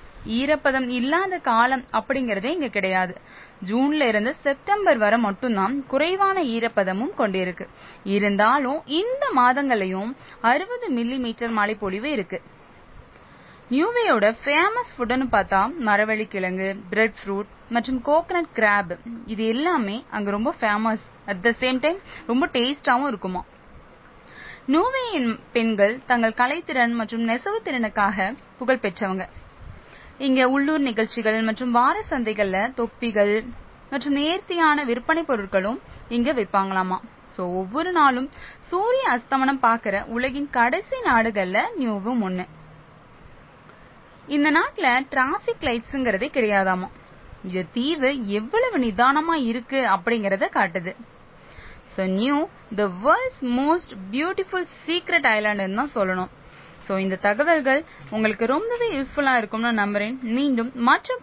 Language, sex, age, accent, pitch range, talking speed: Tamil, female, 20-39, native, 210-280 Hz, 105 wpm